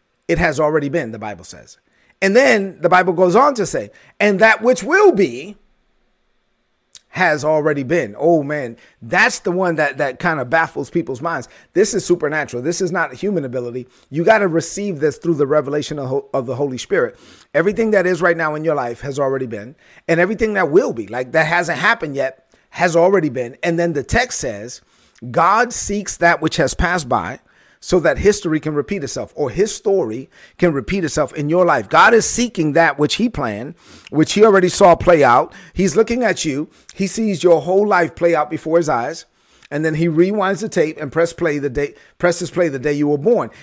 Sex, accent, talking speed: male, American, 210 wpm